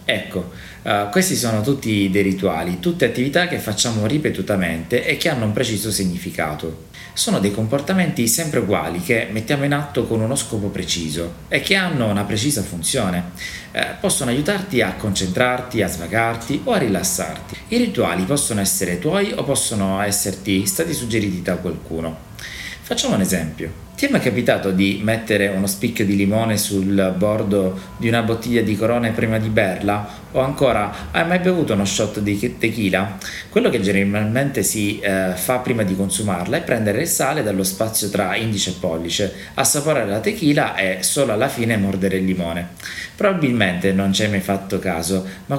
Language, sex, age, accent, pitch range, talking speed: Italian, male, 30-49, native, 95-120 Hz, 165 wpm